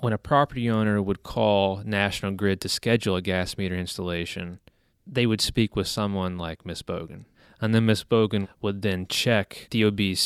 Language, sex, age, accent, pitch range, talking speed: English, male, 30-49, American, 95-110 Hz, 175 wpm